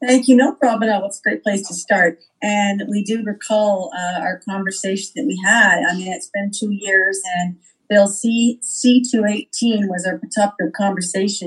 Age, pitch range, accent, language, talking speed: 50-69, 175-230 Hz, American, English, 190 wpm